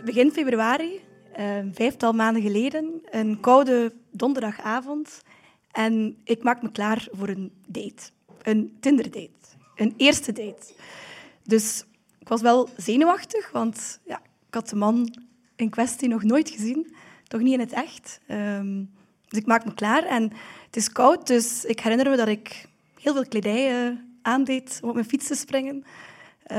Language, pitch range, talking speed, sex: Dutch, 215-260 Hz, 150 wpm, female